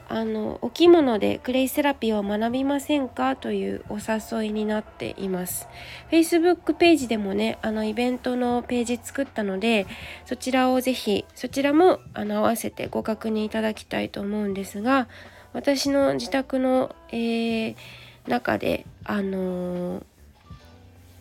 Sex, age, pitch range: female, 20-39, 195-245 Hz